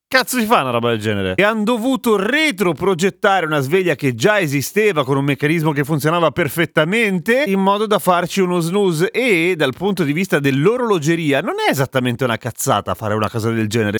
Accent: native